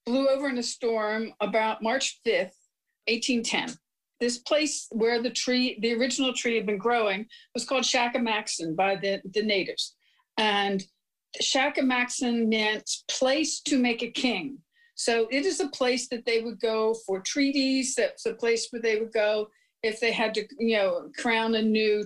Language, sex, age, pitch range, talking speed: English, female, 50-69, 205-255 Hz, 170 wpm